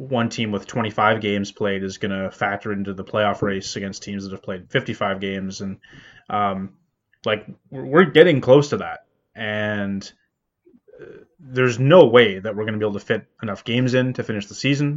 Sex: male